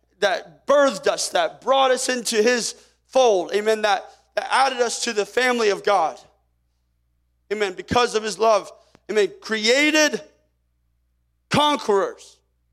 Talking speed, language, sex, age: 125 wpm, English, male, 30-49